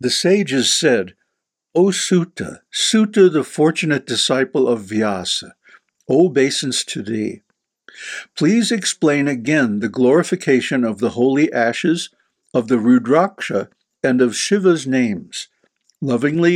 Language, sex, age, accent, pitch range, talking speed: English, male, 60-79, American, 125-170 Hz, 110 wpm